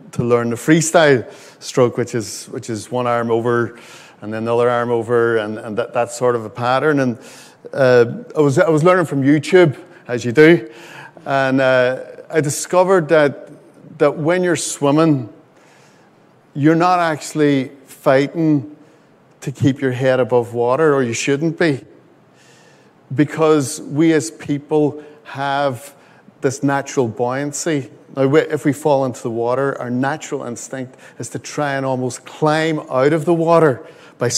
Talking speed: 155 wpm